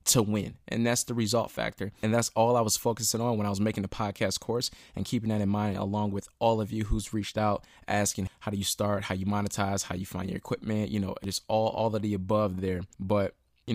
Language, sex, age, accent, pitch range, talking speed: English, male, 20-39, American, 100-120 Hz, 255 wpm